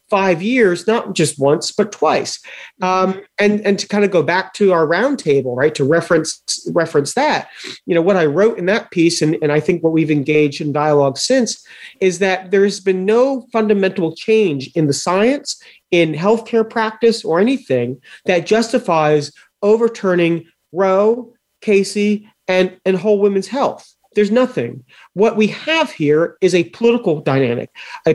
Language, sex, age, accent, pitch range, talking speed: English, male, 40-59, American, 155-215 Hz, 165 wpm